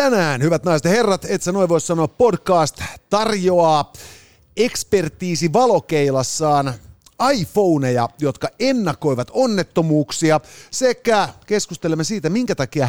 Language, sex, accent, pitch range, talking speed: Finnish, male, native, 130-185 Hz, 100 wpm